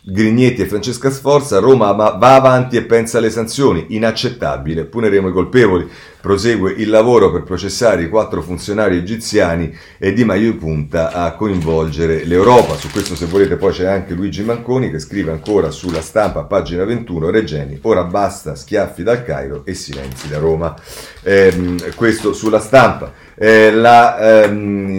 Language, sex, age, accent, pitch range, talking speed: Italian, male, 40-59, native, 85-110 Hz, 155 wpm